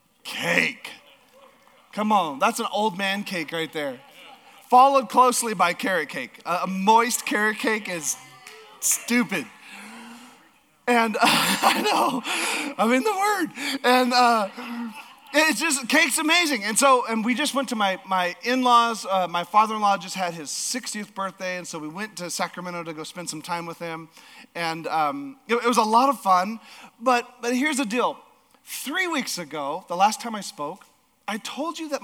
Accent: American